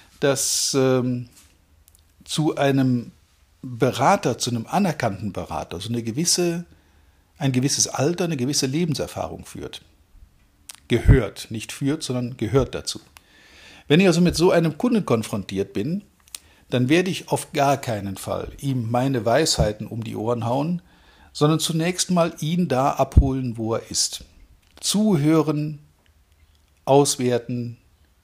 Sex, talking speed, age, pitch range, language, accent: male, 120 wpm, 50-69, 105-150 Hz, German, German